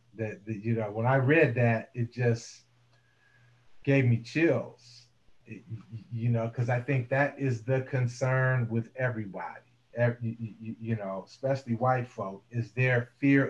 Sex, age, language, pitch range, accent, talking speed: male, 40-59, English, 115-135 Hz, American, 160 wpm